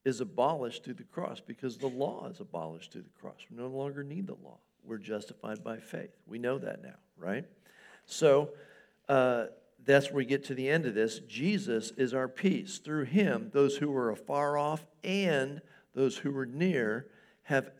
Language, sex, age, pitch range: English, male, 60-79, 115-145 Hz